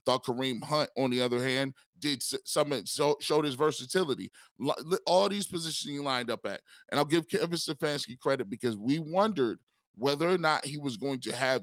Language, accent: English, American